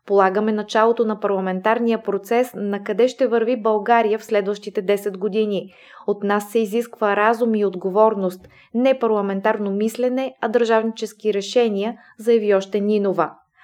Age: 20-39